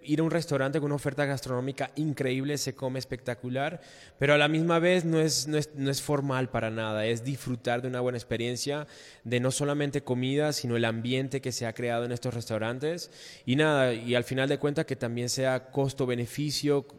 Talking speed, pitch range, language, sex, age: 200 wpm, 125-145 Hz, Spanish, male, 20-39